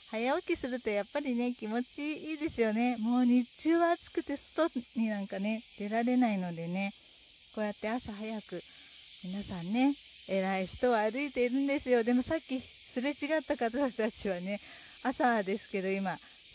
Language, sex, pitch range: Japanese, female, 225-310 Hz